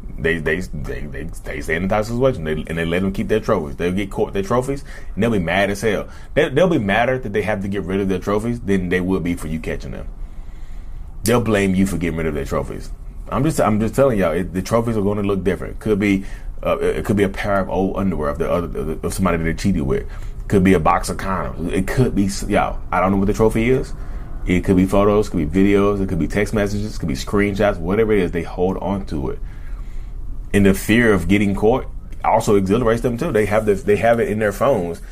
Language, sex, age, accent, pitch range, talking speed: English, male, 30-49, American, 85-100 Hz, 270 wpm